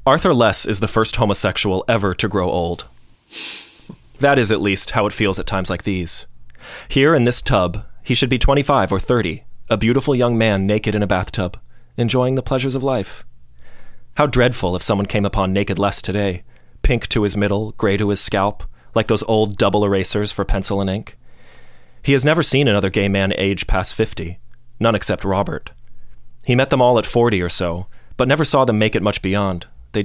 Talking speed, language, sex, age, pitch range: 200 wpm, English, male, 30-49, 95-120 Hz